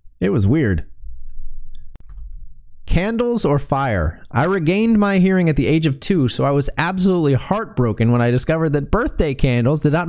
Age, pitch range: 30-49, 120-165 Hz